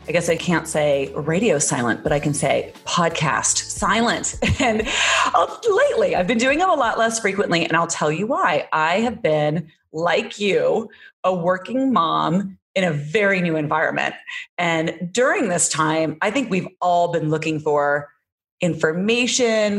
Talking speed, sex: 160 wpm, female